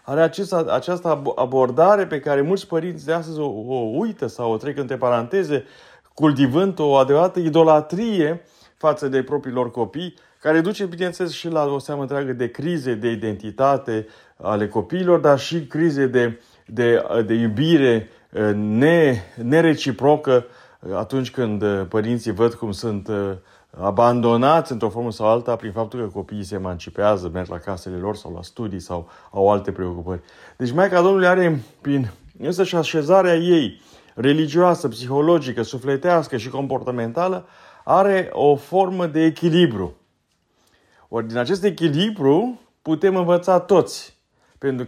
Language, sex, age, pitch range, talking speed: Romanian, male, 30-49, 110-160 Hz, 140 wpm